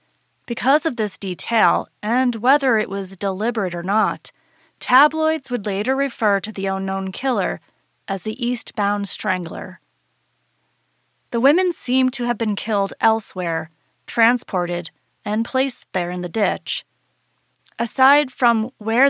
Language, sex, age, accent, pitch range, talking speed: English, female, 30-49, American, 195-245 Hz, 130 wpm